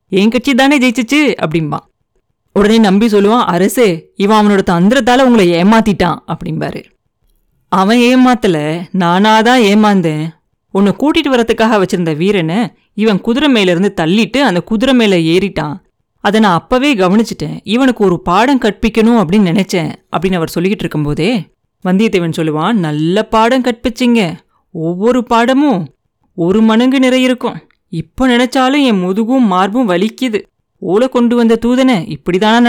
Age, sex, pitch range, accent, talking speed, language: 30-49, female, 175-240 Hz, native, 125 wpm, Tamil